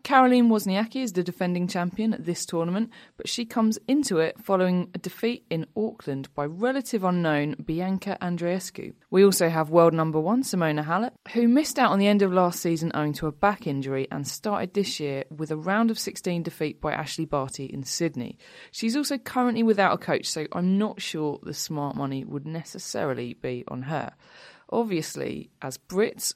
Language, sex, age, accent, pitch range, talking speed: English, female, 20-39, British, 150-210 Hz, 185 wpm